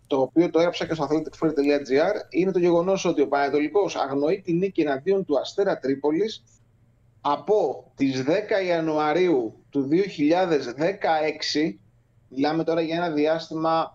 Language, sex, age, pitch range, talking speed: Greek, male, 30-49, 140-205 Hz, 135 wpm